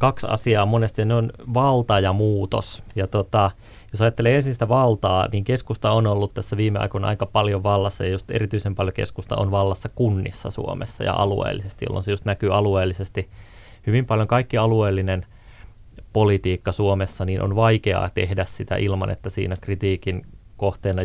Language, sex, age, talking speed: Finnish, male, 30-49, 160 wpm